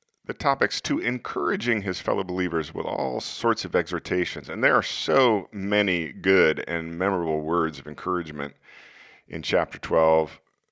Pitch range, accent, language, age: 80-100 Hz, American, English, 40-59